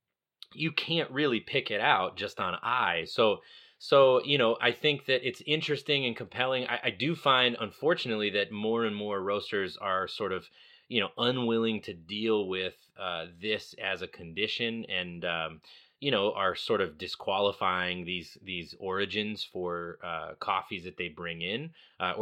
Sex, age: male, 20-39